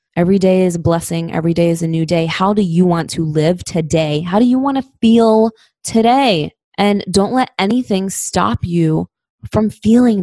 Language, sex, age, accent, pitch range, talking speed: English, female, 20-39, American, 165-200 Hz, 195 wpm